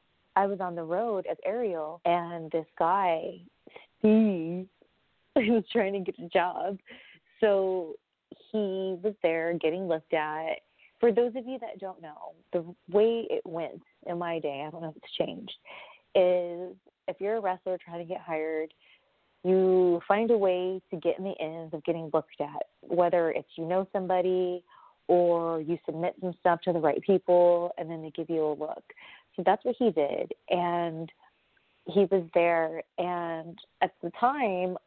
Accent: American